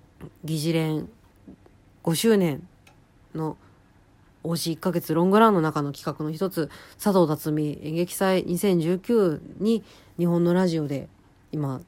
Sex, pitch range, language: female, 135-185 Hz, Japanese